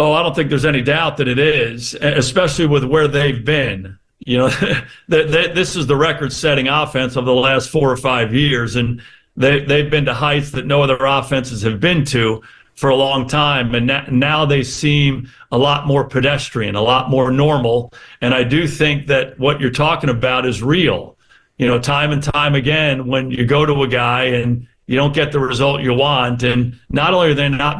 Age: 50-69